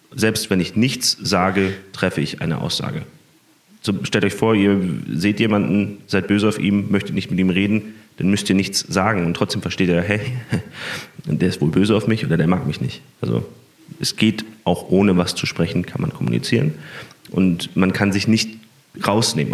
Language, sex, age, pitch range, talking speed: German, male, 30-49, 95-130 Hz, 195 wpm